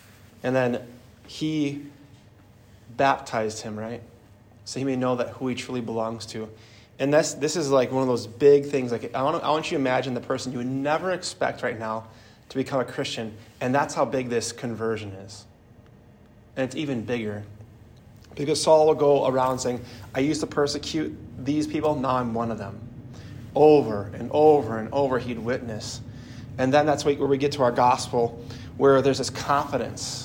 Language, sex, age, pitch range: English, male, 30-49, 120-140 Hz